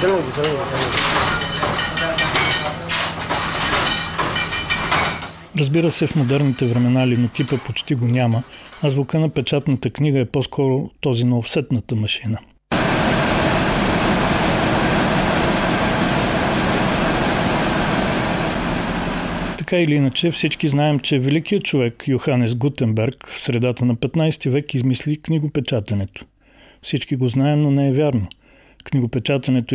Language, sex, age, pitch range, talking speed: Bulgarian, male, 40-59, 120-145 Hz, 90 wpm